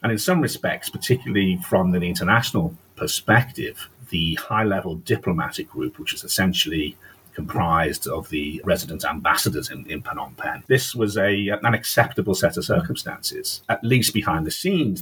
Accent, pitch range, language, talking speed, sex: British, 95-130 Hz, English, 150 wpm, male